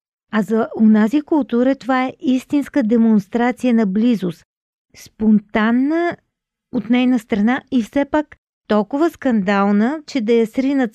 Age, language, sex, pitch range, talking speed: 50-69, Bulgarian, female, 195-250 Hz, 125 wpm